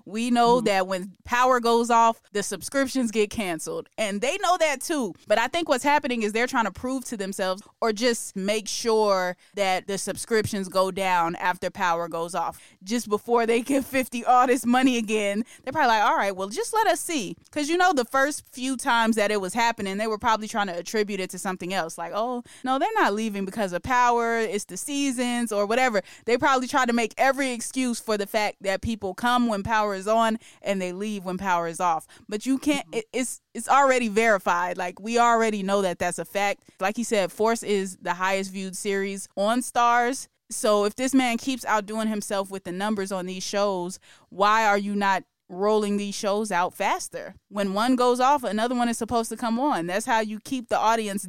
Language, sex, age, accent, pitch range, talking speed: English, female, 20-39, American, 195-240 Hz, 215 wpm